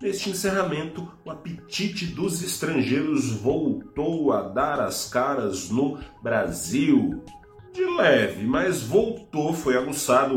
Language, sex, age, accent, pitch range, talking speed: Portuguese, male, 40-59, Brazilian, 110-155 Hz, 110 wpm